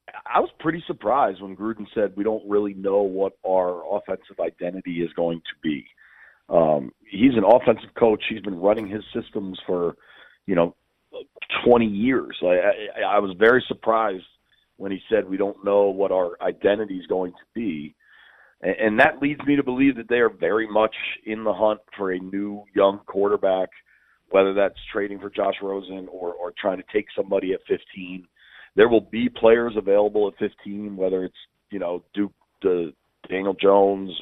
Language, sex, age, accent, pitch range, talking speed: English, male, 40-59, American, 95-115 Hz, 180 wpm